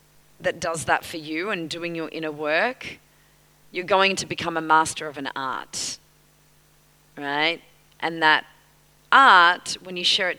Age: 30-49